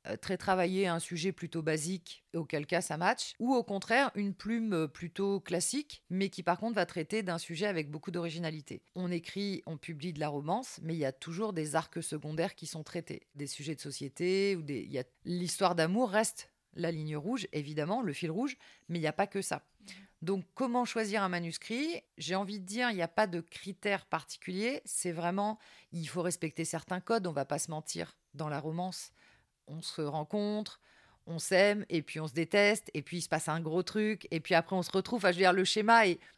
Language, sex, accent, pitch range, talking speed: French, female, French, 160-200 Hz, 225 wpm